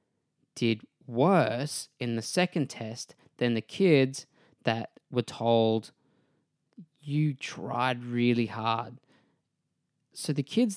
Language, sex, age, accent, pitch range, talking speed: English, male, 20-39, Australian, 110-135 Hz, 105 wpm